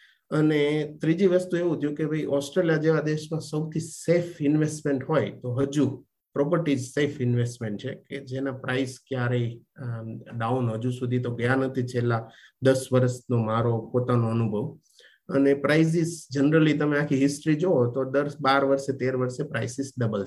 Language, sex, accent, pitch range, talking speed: Gujarati, male, native, 125-160 Hz, 115 wpm